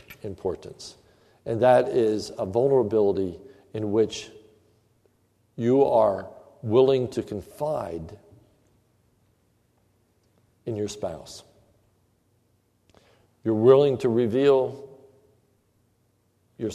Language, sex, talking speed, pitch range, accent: English, male, 75 wpm, 110-135 Hz, American